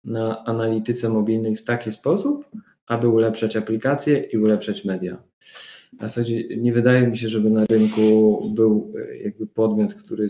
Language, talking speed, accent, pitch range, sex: Polish, 145 wpm, native, 105-115 Hz, male